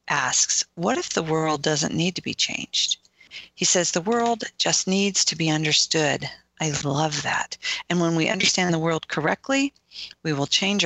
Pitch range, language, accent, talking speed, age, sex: 160-210 Hz, English, American, 175 wpm, 40-59, female